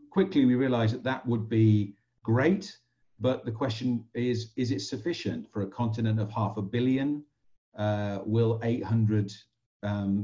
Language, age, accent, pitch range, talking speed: English, 40-59, British, 95-120 Hz, 150 wpm